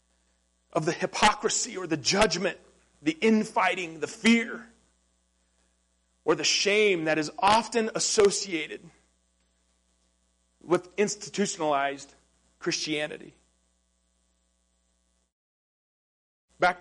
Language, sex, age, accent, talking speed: English, male, 40-59, American, 75 wpm